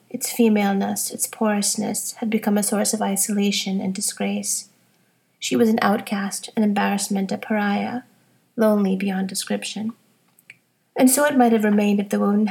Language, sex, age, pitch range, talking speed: English, female, 30-49, 195-230 Hz, 155 wpm